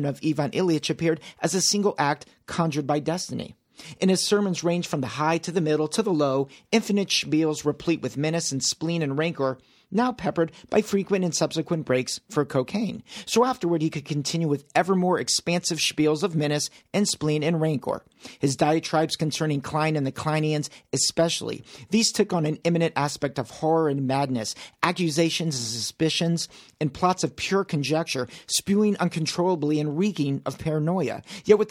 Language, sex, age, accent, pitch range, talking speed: English, male, 40-59, American, 145-180 Hz, 175 wpm